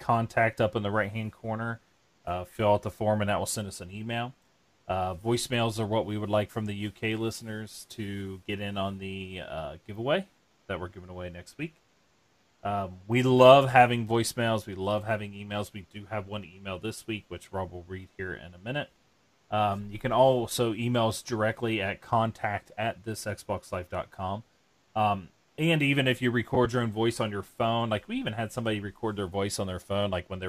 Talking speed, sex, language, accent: 205 wpm, male, English, American